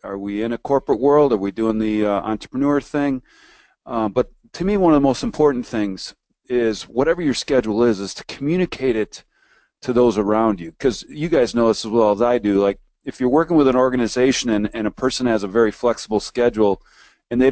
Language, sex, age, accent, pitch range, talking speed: English, male, 40-59, American, 105-130 Hz, 220 wpm